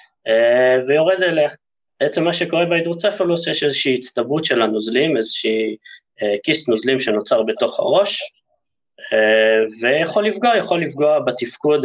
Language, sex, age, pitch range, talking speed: Hebrew, male, 20-39, 115-150 Hz, 110 wpm